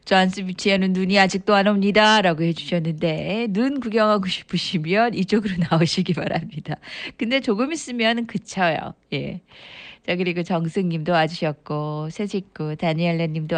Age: 40-59